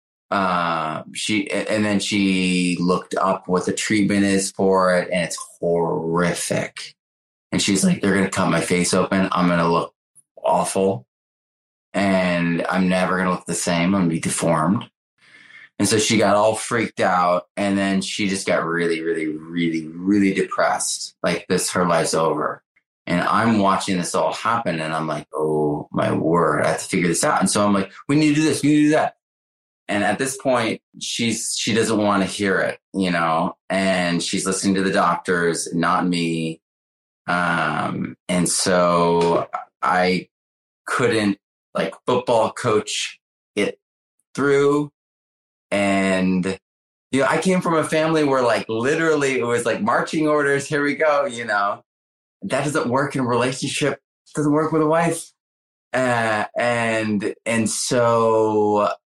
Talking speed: 170 wpm